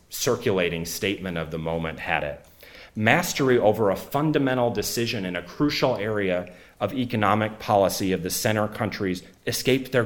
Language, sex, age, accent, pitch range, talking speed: English, male, 40-59, American, 85-105 Hz, 150 wpm